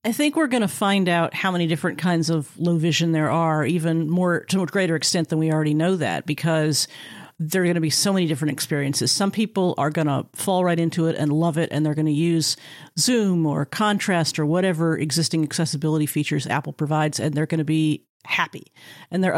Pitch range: 155-185 Hz